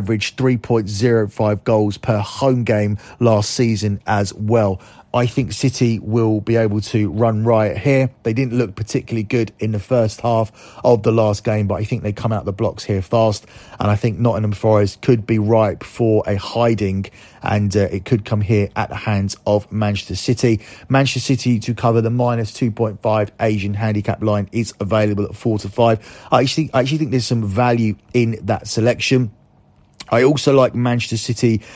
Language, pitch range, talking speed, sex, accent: English, 105-120 Hz, 185 wpm, male, British